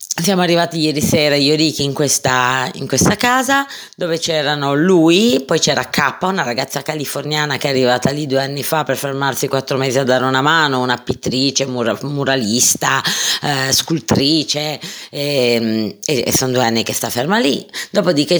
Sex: female